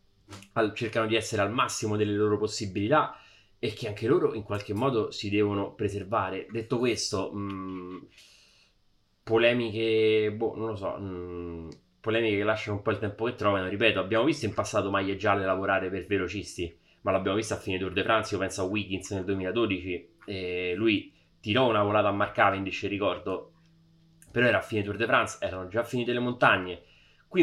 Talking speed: 180 wpm